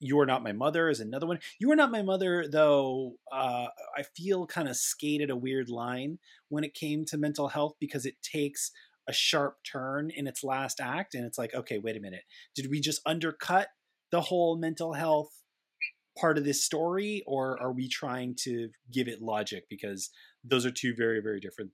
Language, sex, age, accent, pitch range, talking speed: English, male, 30-49, American, 120-155 Hz, 200 wpm